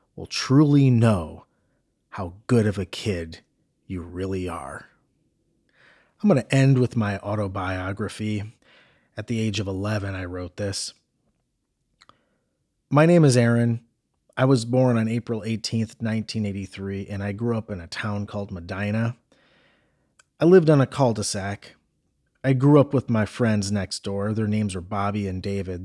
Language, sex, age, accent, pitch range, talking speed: English, male, 30-49, American, 100-125 Hz, 150 wpm